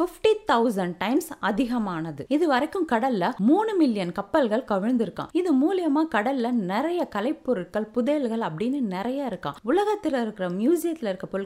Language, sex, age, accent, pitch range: Tamil, female, 20-39, native, 205-290 Hz